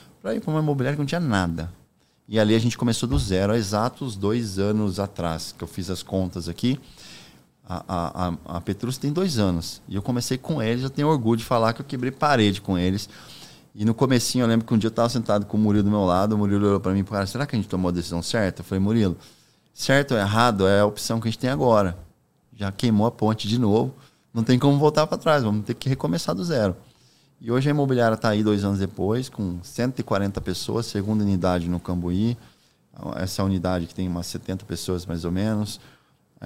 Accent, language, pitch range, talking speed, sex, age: Brazilian, Portuguese, 95-115 Hz, 235 wpm, male, 20-39